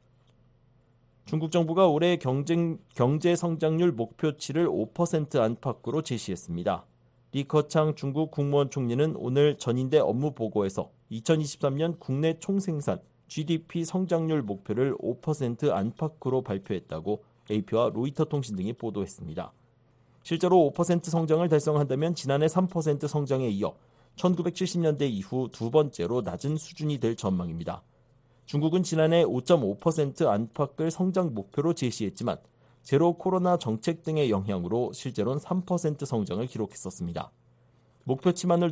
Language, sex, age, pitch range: Korean, male, 40-59, 120-165 Hz